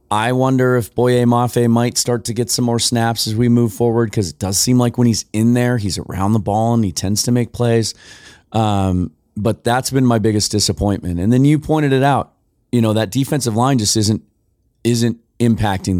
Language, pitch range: English, 95-120 Hz